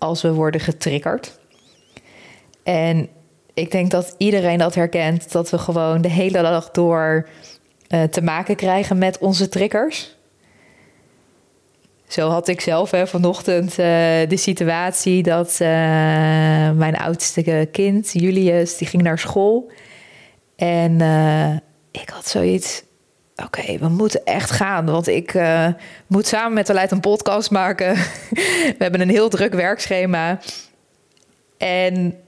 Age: 20-39